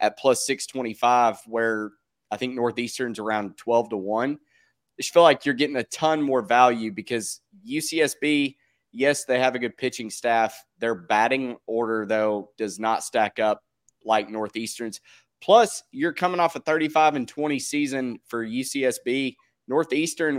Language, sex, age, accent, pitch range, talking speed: English, male, 20-39, American, 110-135 Hz, 155 wpm